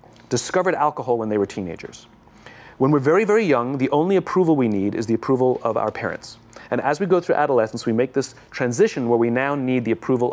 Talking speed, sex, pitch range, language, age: 220 wpm, male, 110-135 Hz, English, 30-49